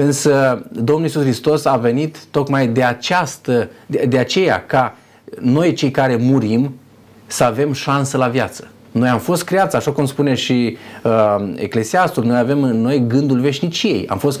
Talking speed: 165 wpm